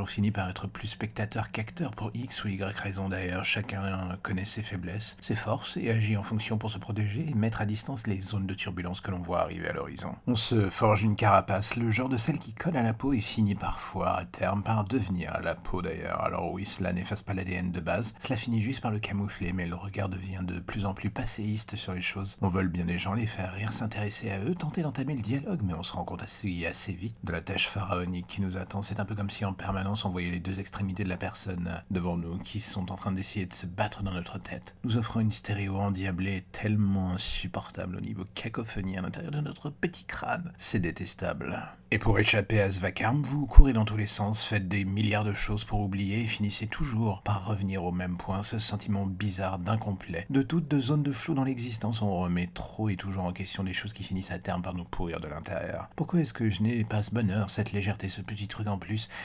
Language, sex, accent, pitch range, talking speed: French, male, French, 95-110 Hz, 240 wpm